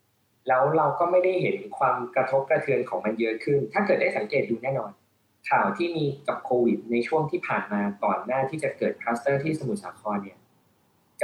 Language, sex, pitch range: Thai, male, 115-155 Hz